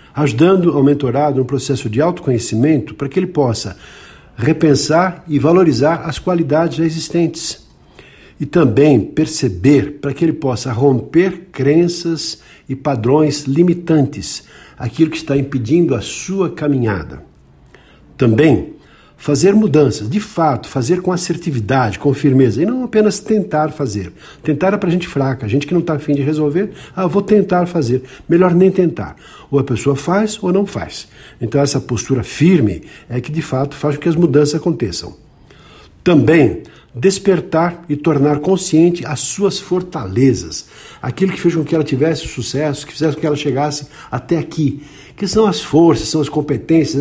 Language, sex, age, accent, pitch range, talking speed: Portuguese, male, 60-79, Brazilian, 135-170 Hz, 155 wpm